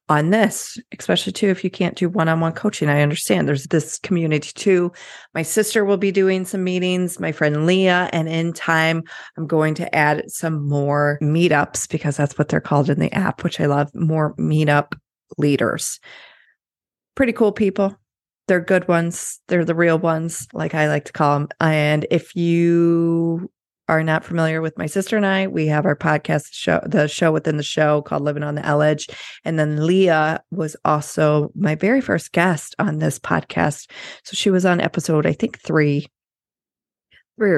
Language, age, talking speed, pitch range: English, 30-49, 180 wpm, 150-185 Hz